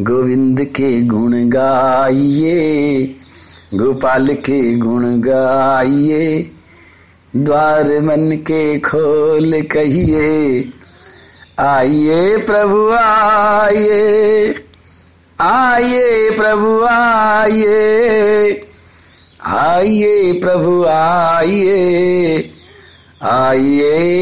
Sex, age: male, 50-69